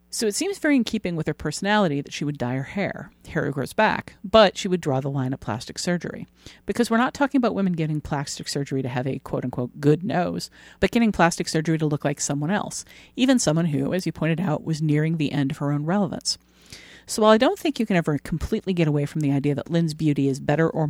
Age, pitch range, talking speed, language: 50-69, 140-190 Hz, 250 wpm, English